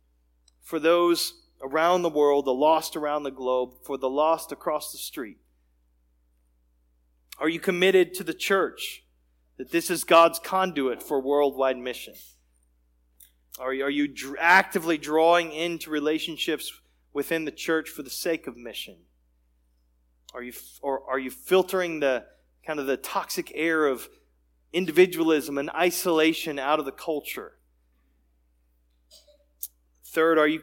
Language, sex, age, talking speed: English, male, 30-49, 130 wpm